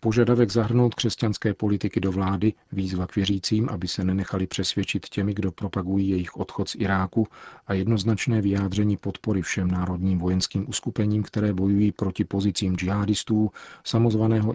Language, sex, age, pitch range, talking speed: Czech, male, 40-59, 95-110 Hz, 140 wpm